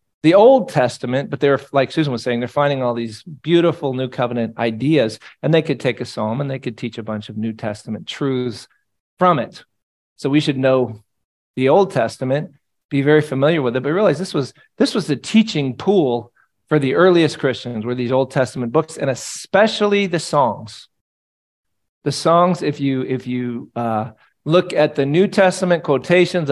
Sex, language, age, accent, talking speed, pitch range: male, English, 40-59, American, 185 wpm, 115-155 Hz